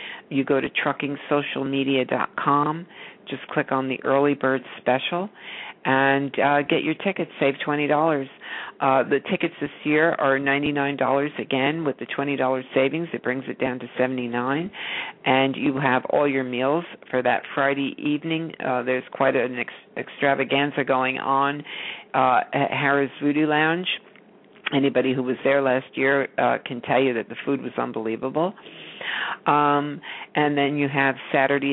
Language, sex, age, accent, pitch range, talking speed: English, female, 50-69, American, 130-150 Hz, 150 wpm